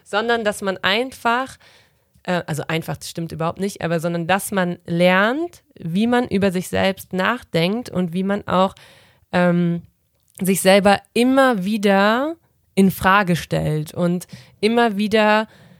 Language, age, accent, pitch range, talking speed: German, 30-49, German, 175-205 Hz, 140 wpm